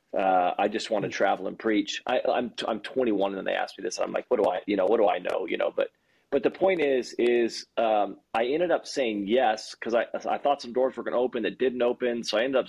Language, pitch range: English, 105-130 Hz